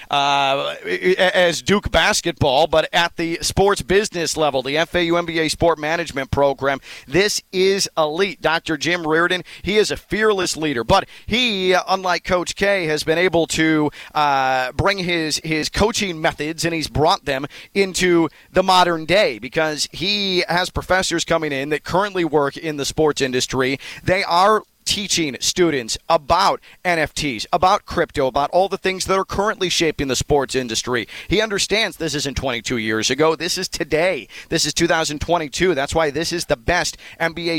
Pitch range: 145-180 Hz